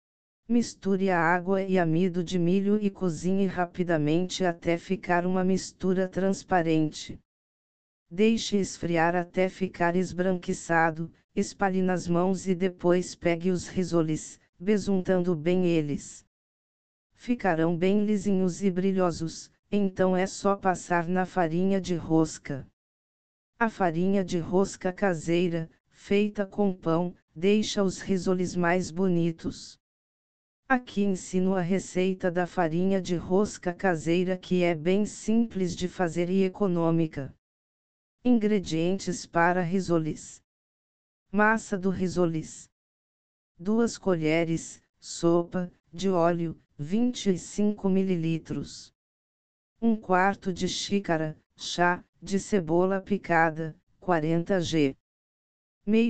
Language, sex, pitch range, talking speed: Portuguese, female, 170-195 Hz, 105 wpm